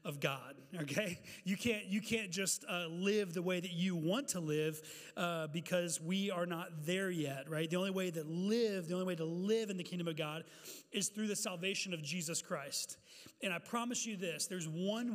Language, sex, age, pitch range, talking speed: English, male, 30-49, 170-205 Hz, 215 wpm